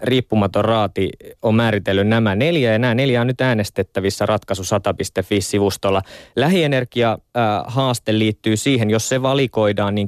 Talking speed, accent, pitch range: 120 wpm, native, 95-115 Hz